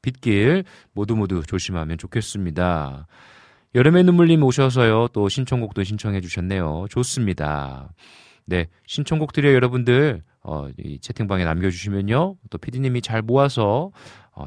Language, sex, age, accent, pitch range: Korean, male, 40-59, native, 80-125 Hz